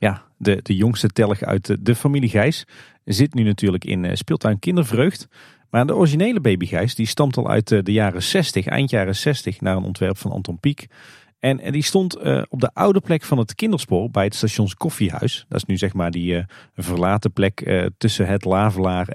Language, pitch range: Dutch, 100-140 Hz